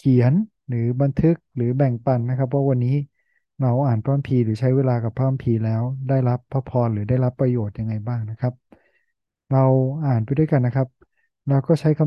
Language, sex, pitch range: Thai, male, 125-145 Hz